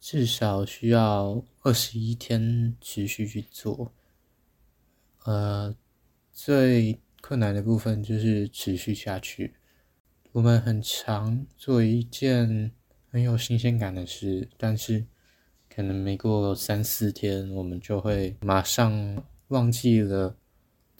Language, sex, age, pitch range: Chinese, male, 20-39, 100-120 Hz